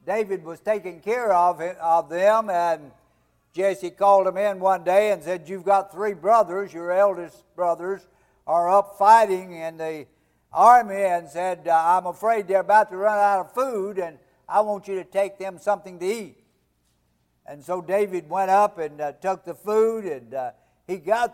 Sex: male